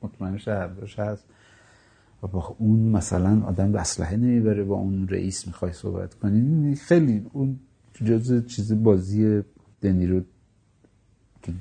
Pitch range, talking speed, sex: 100-140 Hz, 120 wpm, male